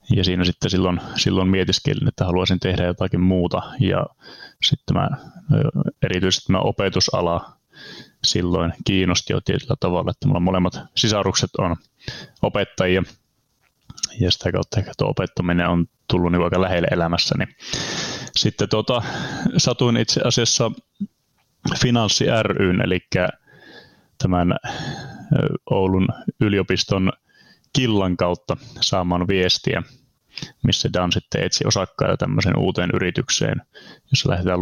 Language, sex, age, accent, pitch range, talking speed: Finnish, male, 20-39, native, 90-115 Hz, 115 wpm